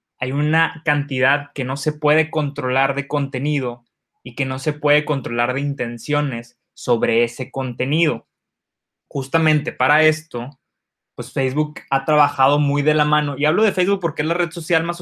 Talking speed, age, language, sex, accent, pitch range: 170 wpm, 20-39, Spanish, male, Mexican, 125-150 Hz